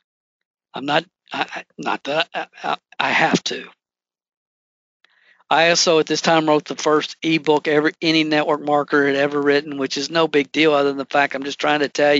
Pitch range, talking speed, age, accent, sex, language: 130-155 Hz, 185 wpm, 50-69, American, male, English